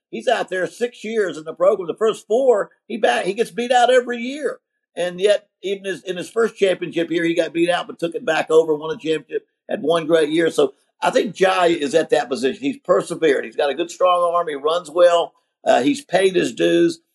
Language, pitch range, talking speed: English, 150-205 Hz, 240 wpm